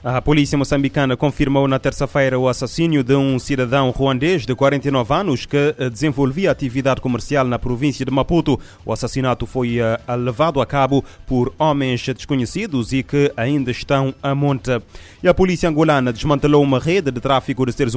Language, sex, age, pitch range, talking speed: Portuguese, male, 30-49, 120-140 Hz, 165 wpm